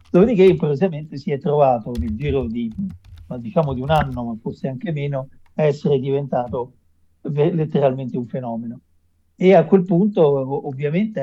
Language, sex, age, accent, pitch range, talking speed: Italian, male, 50-69, native, 125-165 Hz, 145 wpm